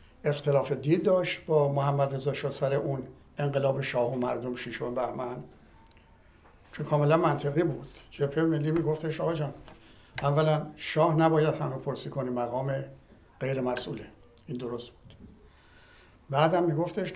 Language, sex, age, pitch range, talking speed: Persian, male, 60-79, 135-170 Hz, 125 wpm